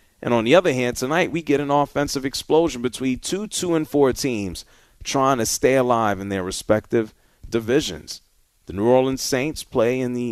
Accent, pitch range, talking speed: American, 100-130 Hz, 180 wpm